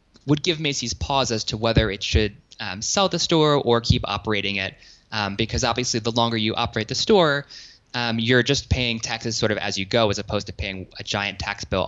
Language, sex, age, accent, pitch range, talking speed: English, male, 20-39, American, 100-130 Hz, 220 wpm